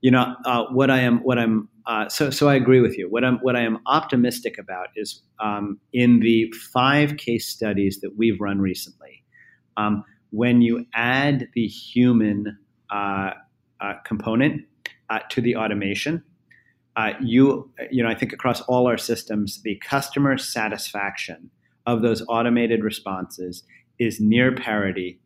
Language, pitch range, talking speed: English, 105-125 Hz, 155 wpm